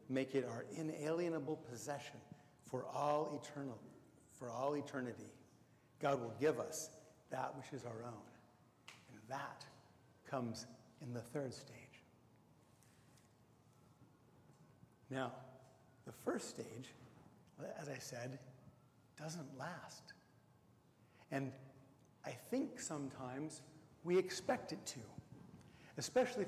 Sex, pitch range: male, 120-150 Hz